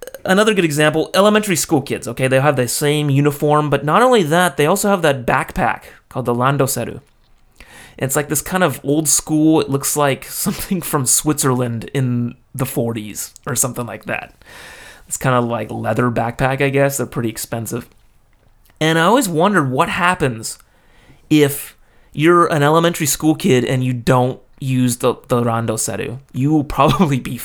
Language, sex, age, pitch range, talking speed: English, male, 30-49, 125-155 Hz, 170 wpm